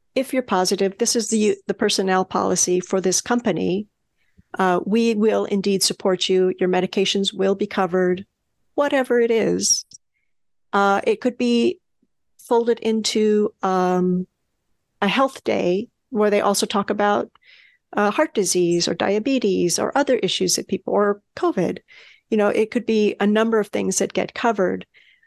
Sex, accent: female, American